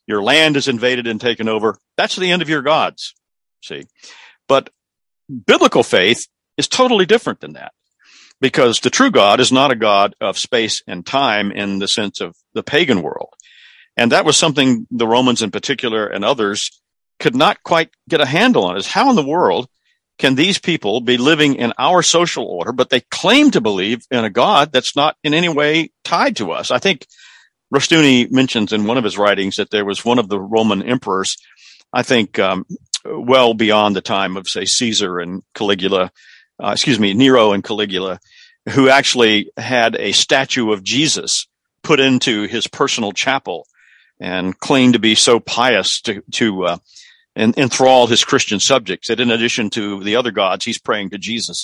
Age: 50-69